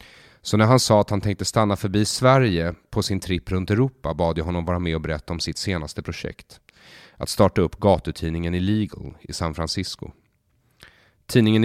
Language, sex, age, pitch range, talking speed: English, male, 30-49, 85-105 Hz, 180 wpm